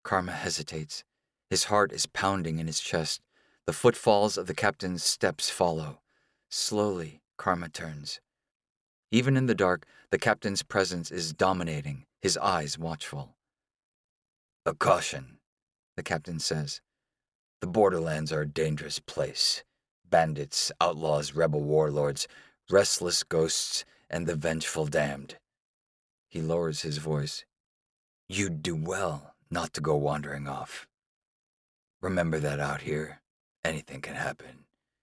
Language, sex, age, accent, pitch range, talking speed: English, male, 40-59, American, 75-100 Hz, 120 wpm